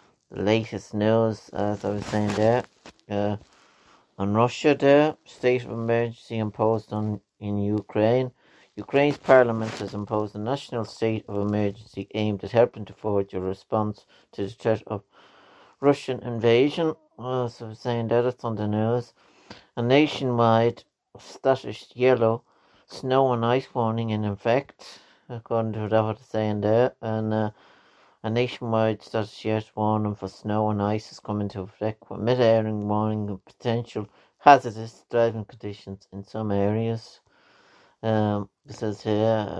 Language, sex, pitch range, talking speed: English, male, 105-115 Hz, 145 wpm